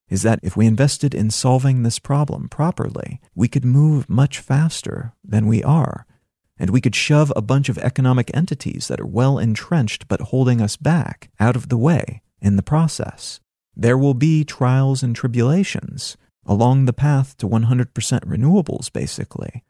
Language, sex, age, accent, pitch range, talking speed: English, male, 40-59, American, 110-140 Hz, 170 wpm